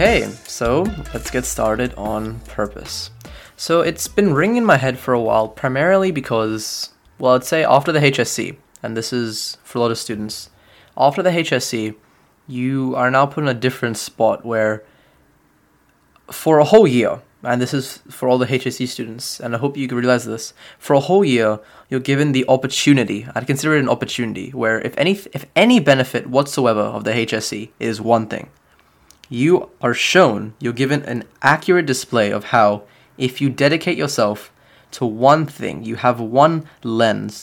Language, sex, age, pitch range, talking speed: English, male, 10-29, 110-135 Hz, 180 wpm